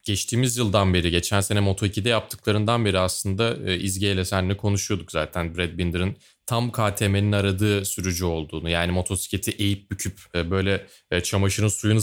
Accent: native